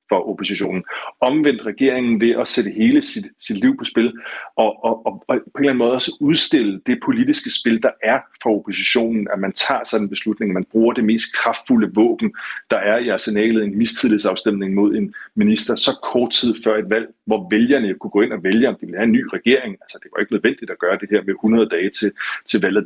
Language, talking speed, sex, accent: Danish, 230 wpm, male, native